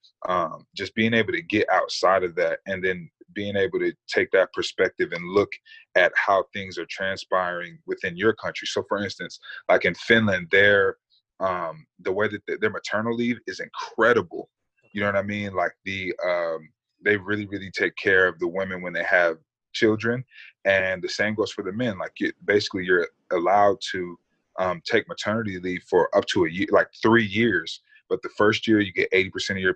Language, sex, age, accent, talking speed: English, male, 20-39, American, 200 wpm